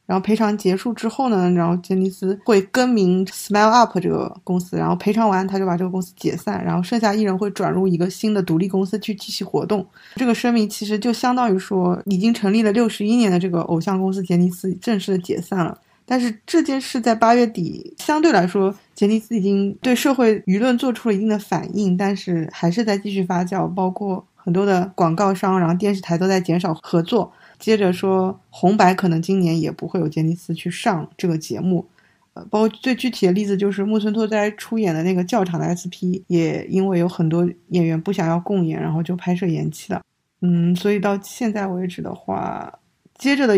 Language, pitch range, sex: Chinese, 180-215 Hz, female